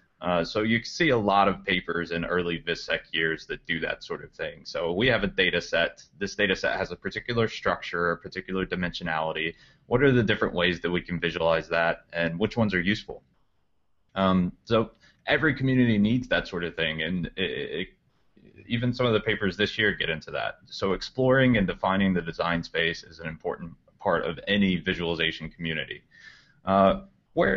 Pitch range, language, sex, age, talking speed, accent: 85-110 Hz, English, male, 20-39, 190 wpm, American